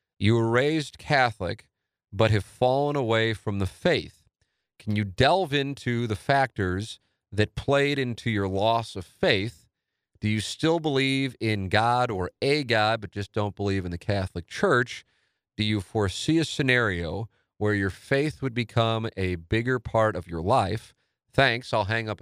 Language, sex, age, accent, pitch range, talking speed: English, male, 40-59, American, 95-130 Hz, 165 wpm